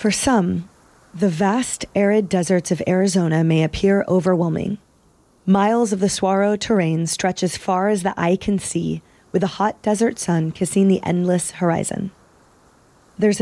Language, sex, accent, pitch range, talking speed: English, female, American, 175-205 Hz, 150 wpm